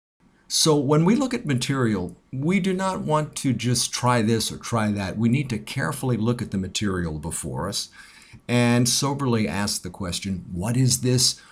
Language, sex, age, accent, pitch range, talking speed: English, male, 50-69, American, 100-135 Hz, 180 wpm